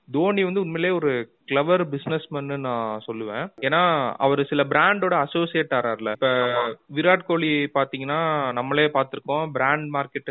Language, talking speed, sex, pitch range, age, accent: Tamil, 105 wpm, male, 120-150 Hz, 30-49, native